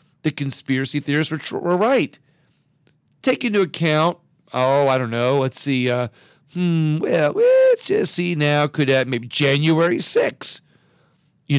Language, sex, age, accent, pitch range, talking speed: English, male, 40-59, American, 140-170 Hz, 145 wpm